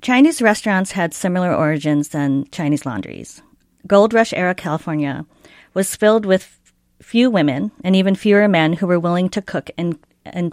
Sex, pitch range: female, 155-195 Hz